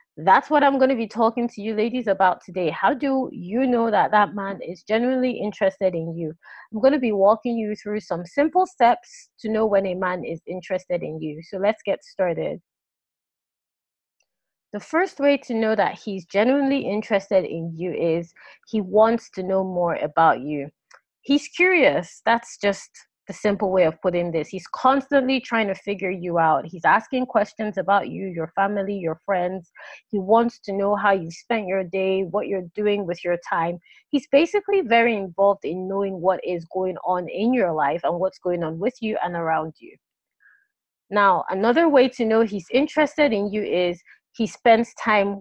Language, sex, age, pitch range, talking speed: English, female, 30-49, 180-235 Hz, 190 wpm